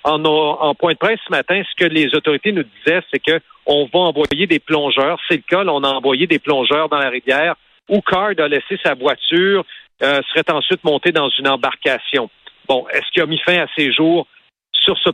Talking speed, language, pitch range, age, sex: 215 wpm, French, 145-175 Hz, 50-69, male